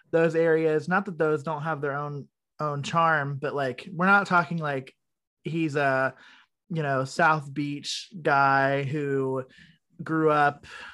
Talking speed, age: 150 wpm, 20-39